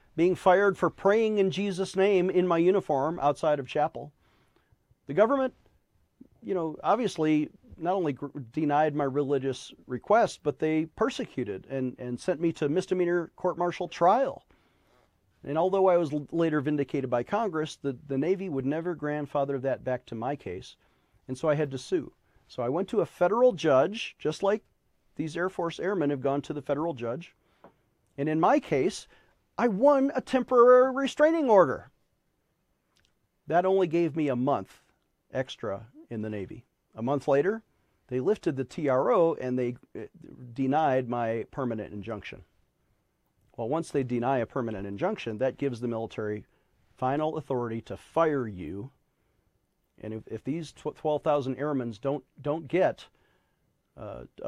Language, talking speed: English, 155 wpm